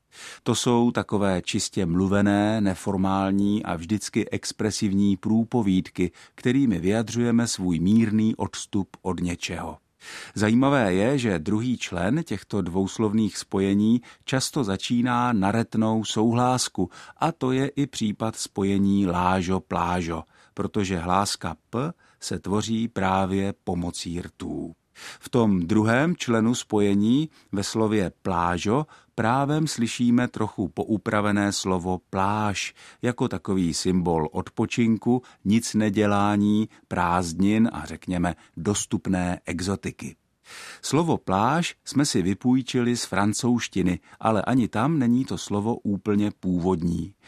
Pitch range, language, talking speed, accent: 95-115 Hz, Czech, 105 wpm, native